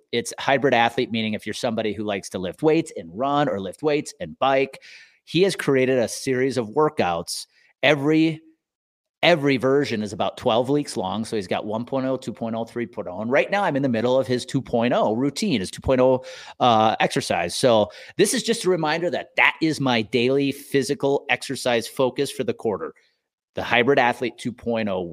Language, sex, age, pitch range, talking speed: English, male, 30-49, 120-150 Hz, 180 wpm